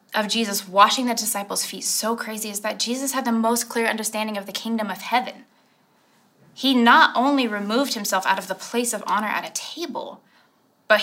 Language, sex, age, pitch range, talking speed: English, female, 20-39, 190-260 Hz, 195 wpm